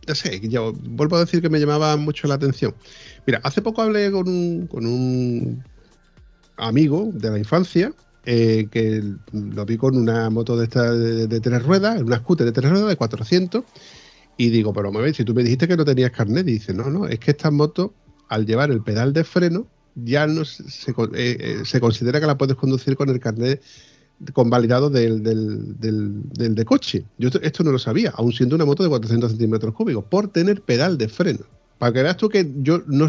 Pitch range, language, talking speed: 115-165 Hz, Spanish, 220 wpm